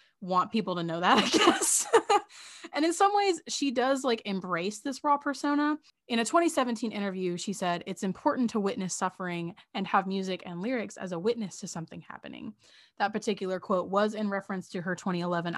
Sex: female